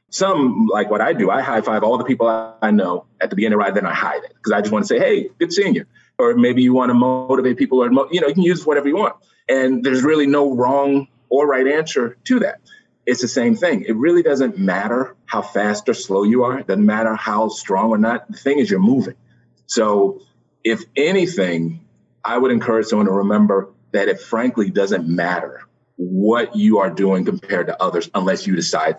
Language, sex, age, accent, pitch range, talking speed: English, male, 40-59, American, 110-180 Hz, 225 wpm